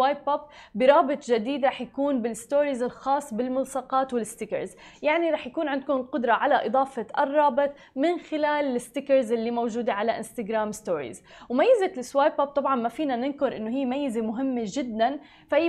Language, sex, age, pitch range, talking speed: Arabic, female, 20-39, 230-285 Hz, 150 wpm